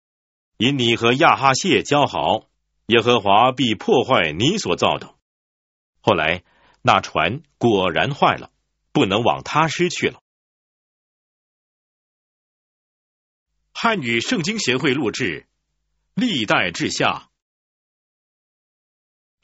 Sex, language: male, Chinese